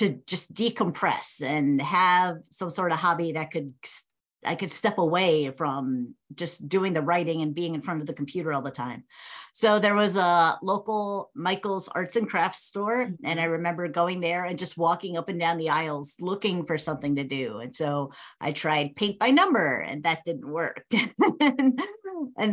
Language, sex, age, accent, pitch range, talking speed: English, female, 50-69, American, 160-210 Hz, 185 wpm